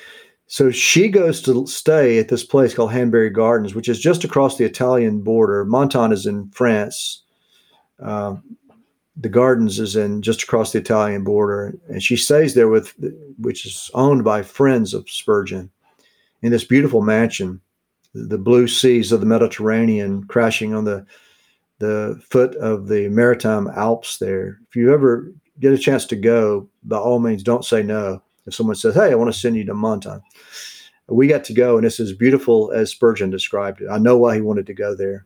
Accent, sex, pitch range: American, male, 110-130 Hz